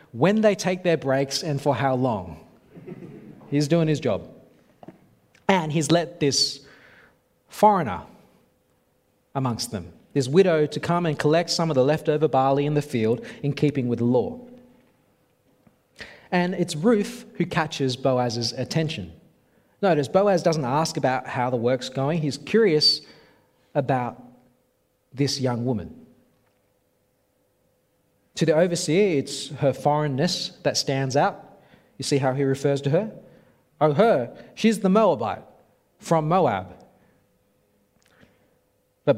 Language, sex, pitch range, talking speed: English, male, 135-165 Hz, 130 wpm